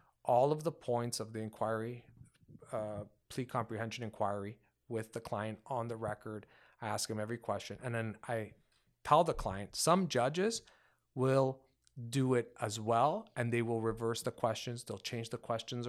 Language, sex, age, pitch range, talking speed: English, male, 30-49, 110-135 Hz, 170 wpm